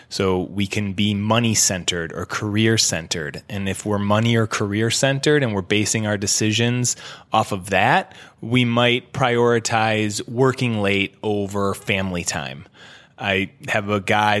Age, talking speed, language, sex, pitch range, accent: 20-39, 140 wpm, English, male, 100-120 Hz, American